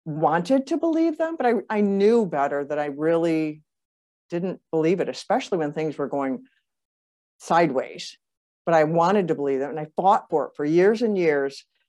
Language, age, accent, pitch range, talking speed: English, 50-69, American, 160-205 Hz, 180 wpm